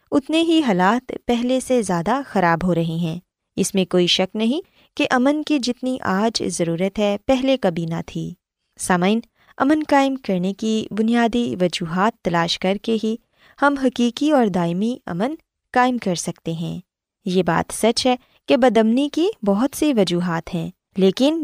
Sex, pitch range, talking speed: female, 180-265 Hz, 165 wpm